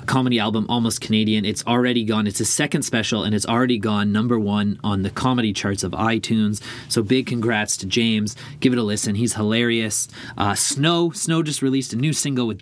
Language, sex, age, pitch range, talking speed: English, male, 30-49, 110-135 Hz, 205 wpm